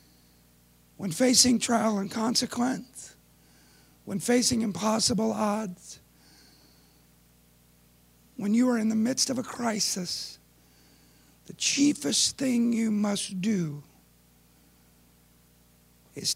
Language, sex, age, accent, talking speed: English, male, 60-79, American, 90 wpm